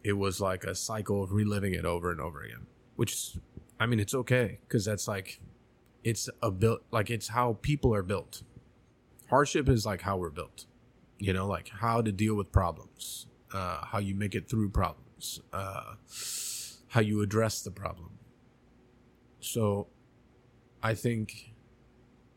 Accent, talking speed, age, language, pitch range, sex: American, 160 wpm, 30-49, English, 95-120 Hz, male